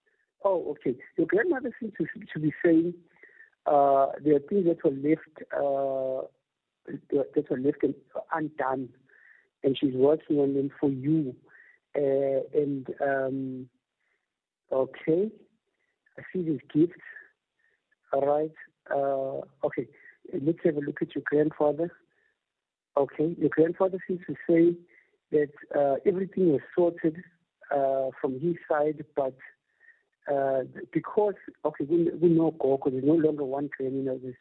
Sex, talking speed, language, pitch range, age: male, 135 wpm, English, 140-185 Hz, 60-79